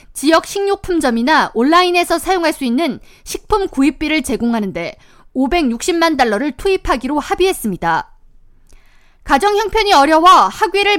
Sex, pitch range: female, 265-365 Hz